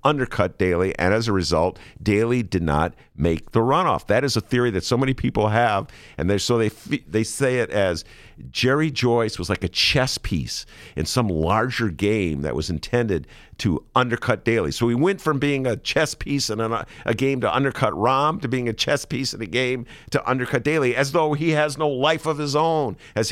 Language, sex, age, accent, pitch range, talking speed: English, male, 50-69, American, 80-130 Hz, 215 wpm